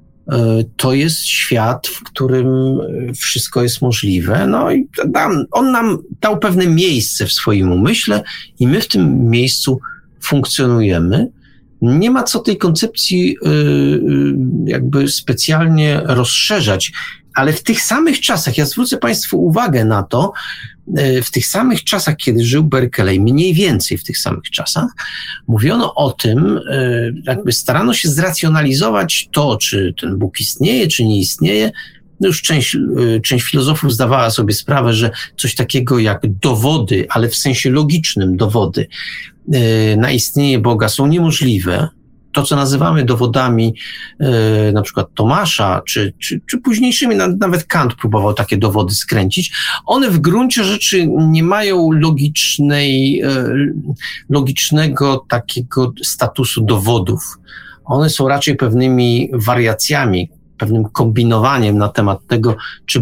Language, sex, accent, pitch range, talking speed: Polish, male, native, 115-155 Hz, 125 wpm